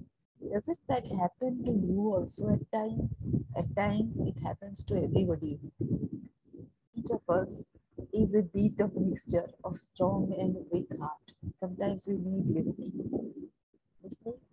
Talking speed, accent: 135 wpm, Indian